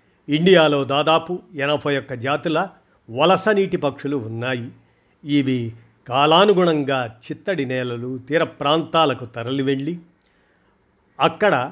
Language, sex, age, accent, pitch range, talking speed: Telugu, male, 50-69, native, 130-160 Hz, 85 wpm